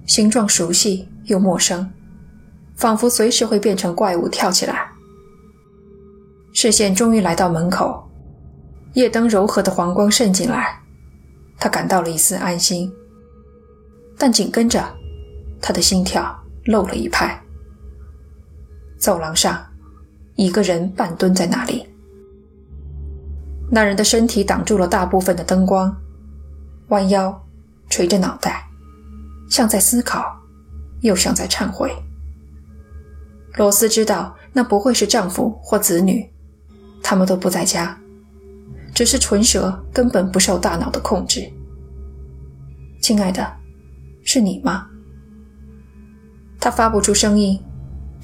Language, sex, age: Chinese, female, 20-39